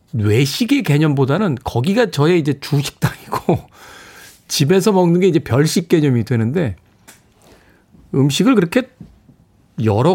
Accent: native